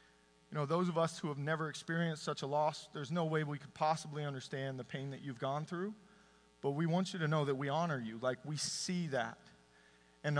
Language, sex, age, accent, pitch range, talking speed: English, male, 40-59, American, 135-170 Hz, 230 wpm